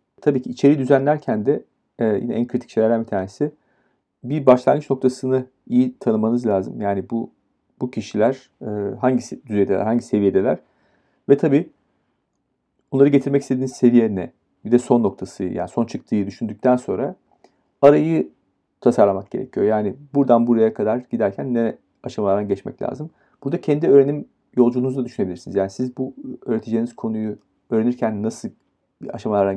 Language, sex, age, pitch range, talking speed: Turkish, male, 40-59, 105-130 Hz, 135 wpm